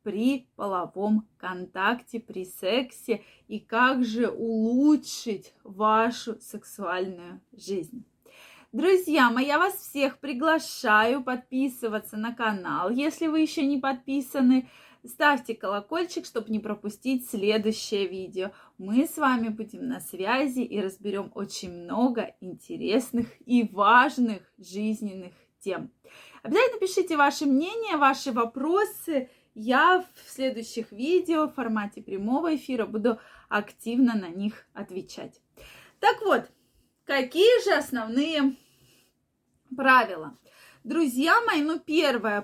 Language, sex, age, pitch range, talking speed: Russian, female, 20-39, 215-280 Hz, 110 wpm